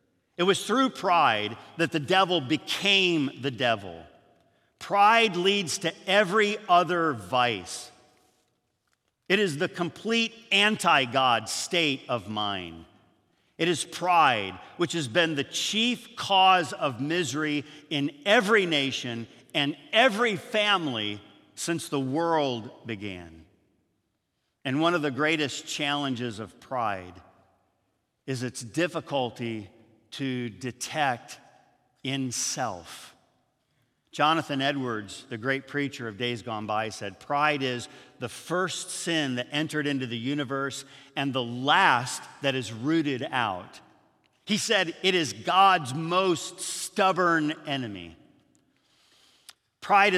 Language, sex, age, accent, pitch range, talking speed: English, male, 50-69, American, 120-175 Hz, 115 wpm